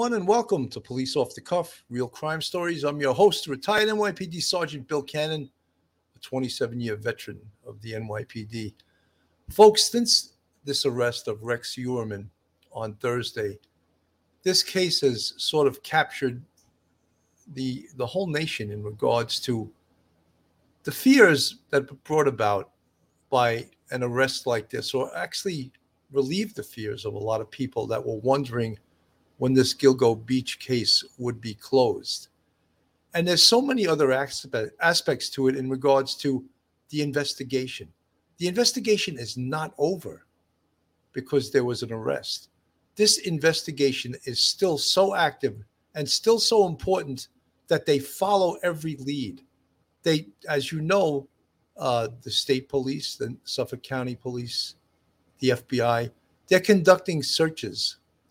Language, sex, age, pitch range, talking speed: English, male, 50-69, 115-160 Hz, 135 wpm